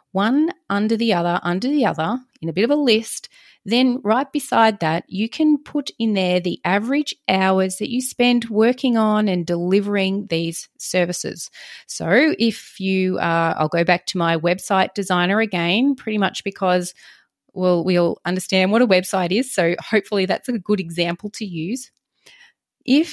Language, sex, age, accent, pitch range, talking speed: English, female, 30-49, Australian, 175-240 Hz, 170 wpm